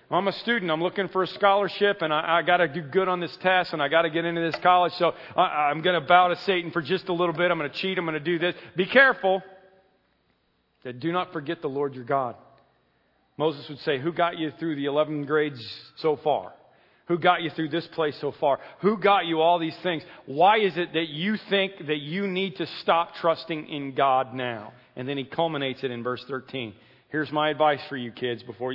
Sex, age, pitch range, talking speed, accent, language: male, 40-59, 120-175 Hz, 240 wpm, American, English